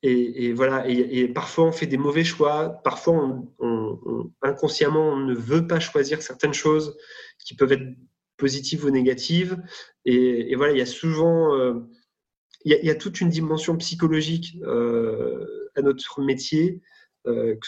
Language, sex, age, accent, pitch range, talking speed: French, male, 30-49, French, 125-165 Hz, 180 wpm